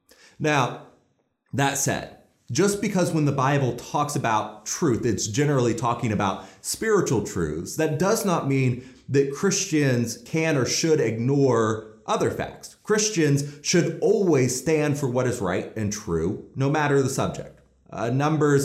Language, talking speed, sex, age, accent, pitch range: English, 145 wpm, male, 30-49, American, 115-150 Hz